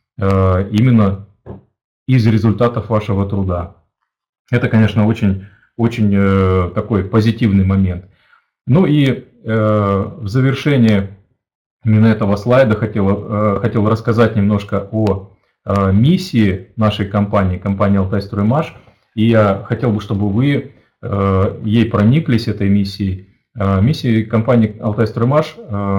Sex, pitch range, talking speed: male, 100-120 Hz, 95 wpm